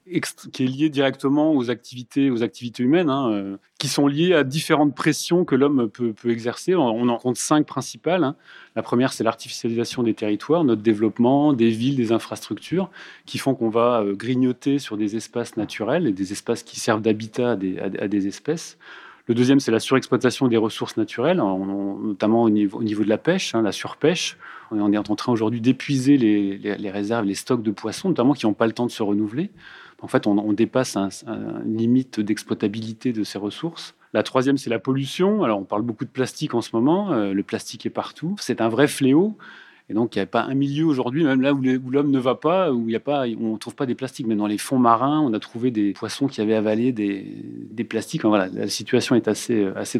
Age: 30-49